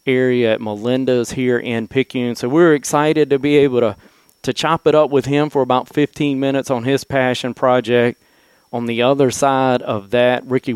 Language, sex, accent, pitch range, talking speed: English, male, American, 110-135 Hz, 190 wpm